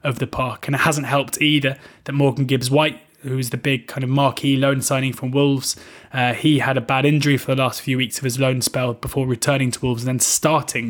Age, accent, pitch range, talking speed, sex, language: 20-39, British, 125-140 Hz, 250 wpm, male, English